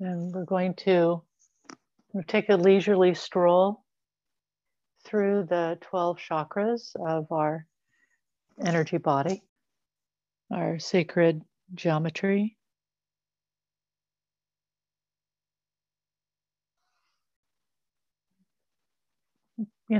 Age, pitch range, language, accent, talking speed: 60-79, 155-195 Hz, English, American, 60 wpm